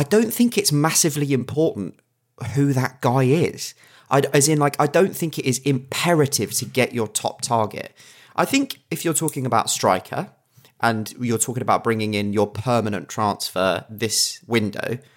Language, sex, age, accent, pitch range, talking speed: English, male, 30-49, British, 105-135 Hz, 165 wpm